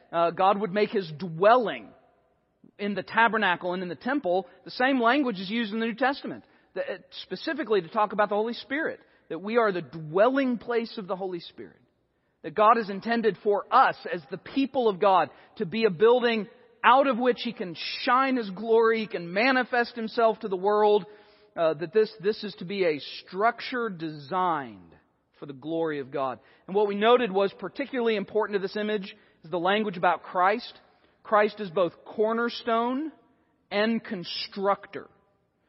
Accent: American